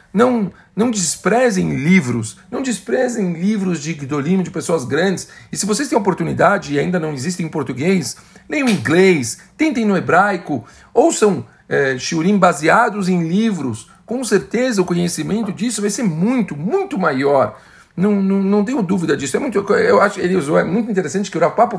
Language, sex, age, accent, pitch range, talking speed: Portuguese, male, 50-69, Brazilian, 125-190 Hz, 175 wpm